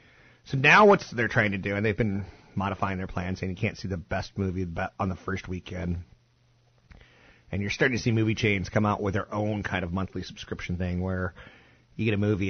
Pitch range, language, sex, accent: 95-120 Hz, English, male, American